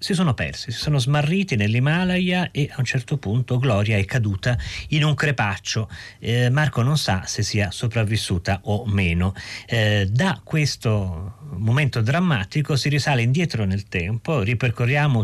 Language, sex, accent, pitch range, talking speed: Italian, male, native, 100-135 Hz, 150 wpm